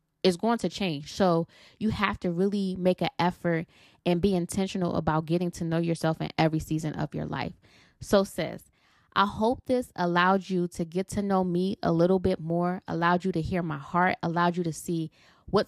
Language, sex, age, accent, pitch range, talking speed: English, female, 20-39, American, 165-195 Hz, 205 wpm